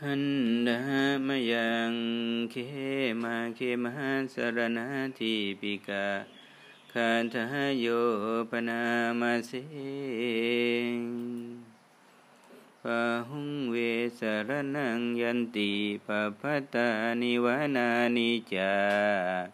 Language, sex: Thai, male